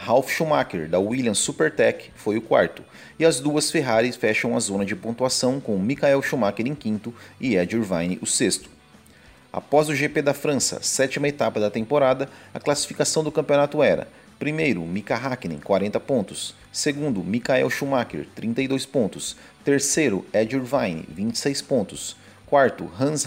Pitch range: 110-145 Hz